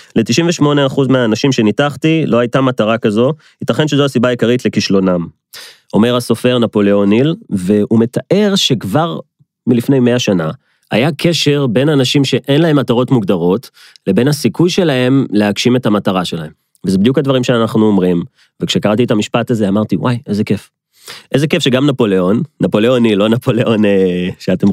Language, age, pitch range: Hebrew, 30-49, 105-140 Hz